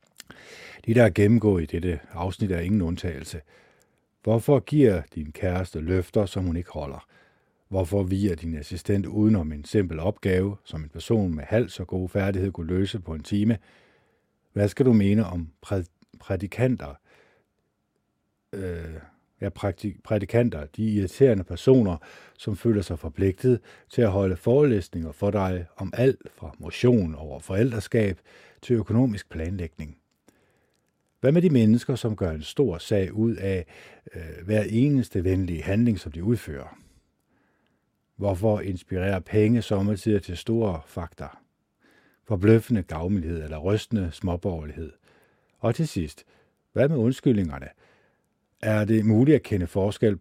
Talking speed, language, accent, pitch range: 135 wpm, Danish, native, 85-110 Hz